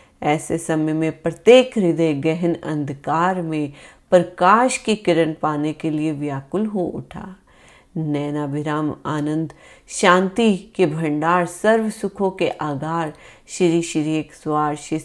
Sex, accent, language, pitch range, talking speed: female, native, Hindi, 155-200 Hz, 130 wpm